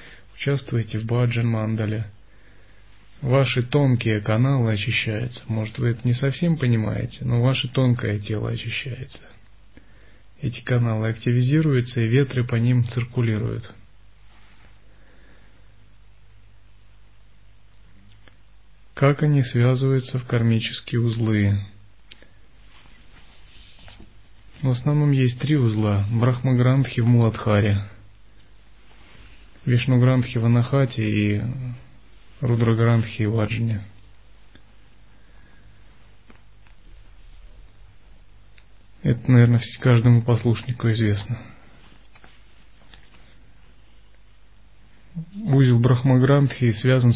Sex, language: male, Russian